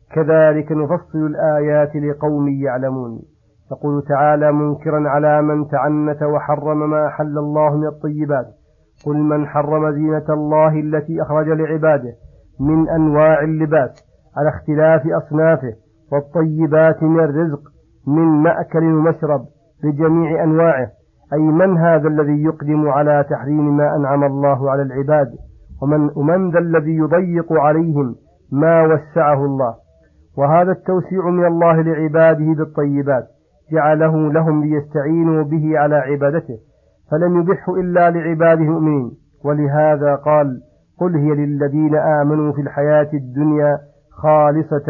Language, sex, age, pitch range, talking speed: Arabic, male, 50-69, 145-160 Hz, 115 wpm